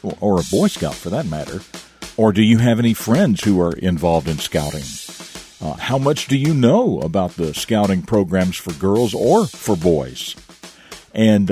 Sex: male